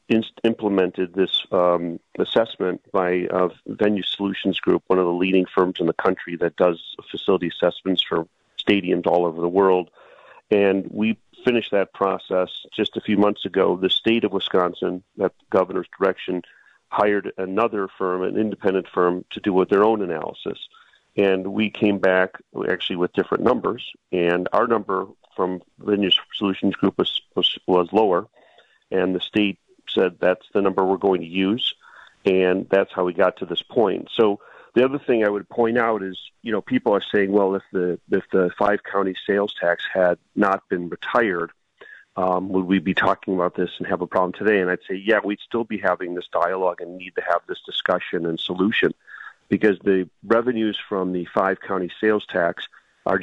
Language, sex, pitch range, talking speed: English, male, 90-105 Hz, 180 wpm